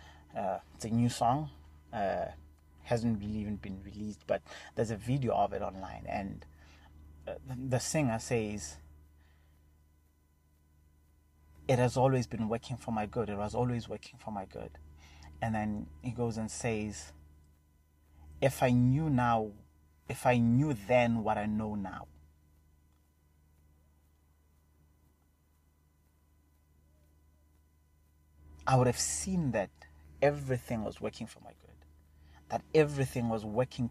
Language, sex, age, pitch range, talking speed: English, male, 30-49, 75-115 Hz, 125 wpm